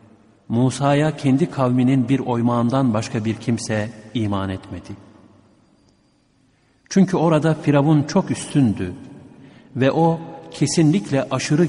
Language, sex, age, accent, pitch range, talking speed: Turkish, male, 60-79, native, 105-135 Hz, 100 wpm